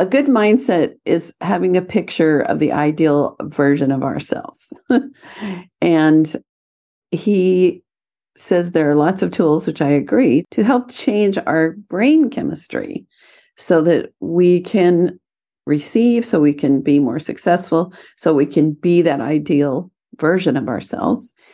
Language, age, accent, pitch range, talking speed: English, 50-69, American, 160-230 Hz, 140 wpm